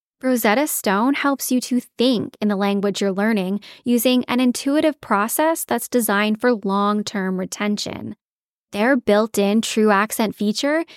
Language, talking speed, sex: English, 135 wpm, female